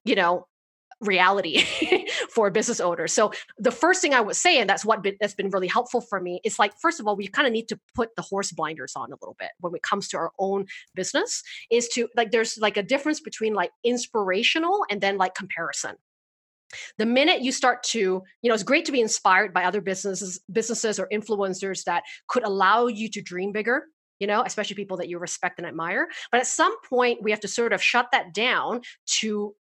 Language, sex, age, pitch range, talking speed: English, female, 30-49, 190-250 Hz, 220 wpm